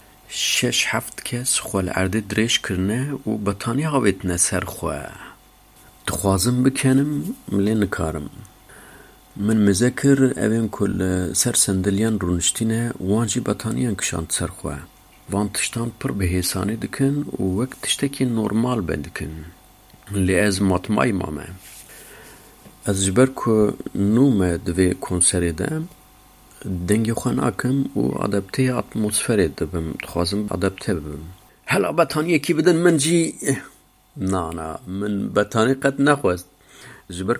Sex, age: male, 50-69